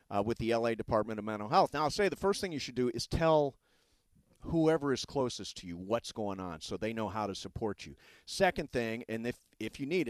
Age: 40-59